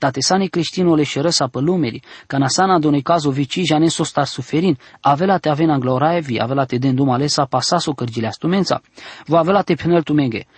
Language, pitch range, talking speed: English, 135-175 Hz, 185 wpm